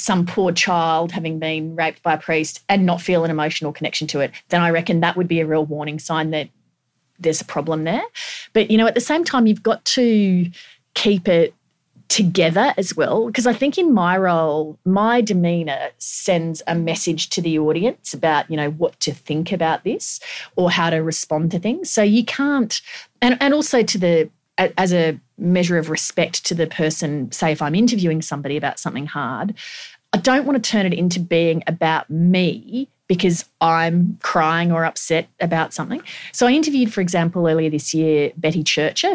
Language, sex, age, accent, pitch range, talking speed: English, female, 30-49, Australian, 155-185 Hz, 195 wpm